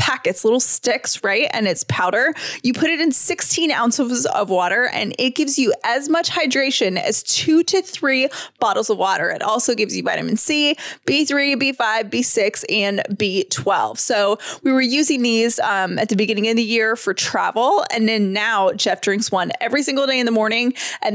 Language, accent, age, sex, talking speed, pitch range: English, American, 20-39, female, 190 wpm, 215-285 Hz